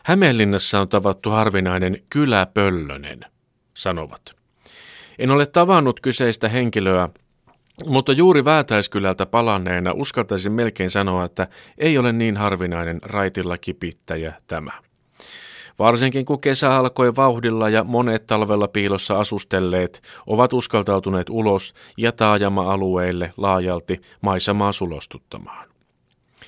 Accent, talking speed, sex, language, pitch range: native, 100 wpm, male, Finnish, 95-120 Hz